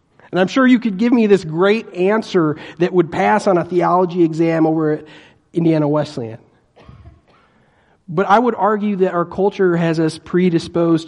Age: 40-59